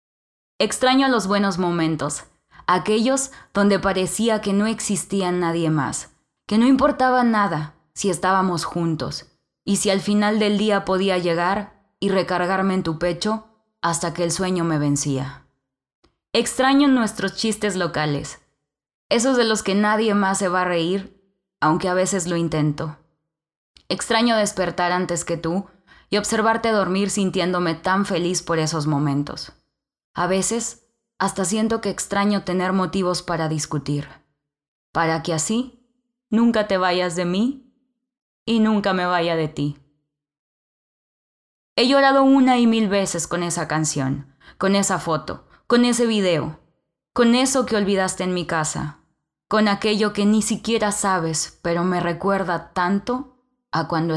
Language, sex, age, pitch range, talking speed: Spanish, female, 20-39, 165-215 Hz, 145 wpm